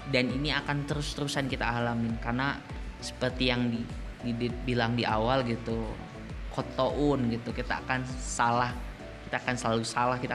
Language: Indonesian